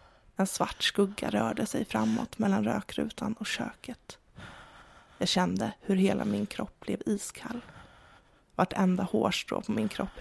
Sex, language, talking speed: female, English, 140 wpm